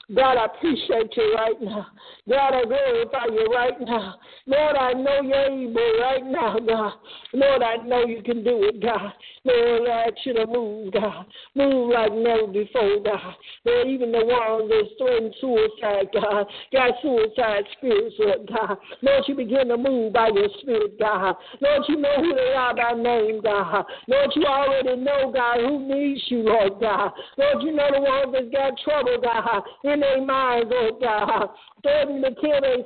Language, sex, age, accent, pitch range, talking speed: English, male, 60-79, American, 230-285 Hz, 175 wpm